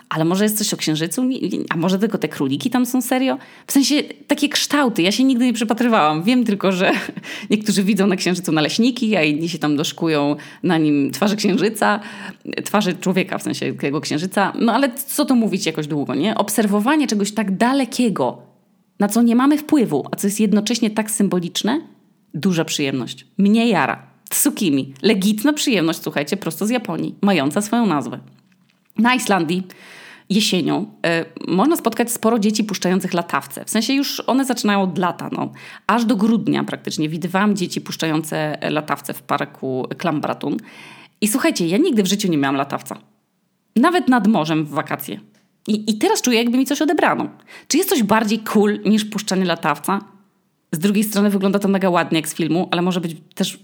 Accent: native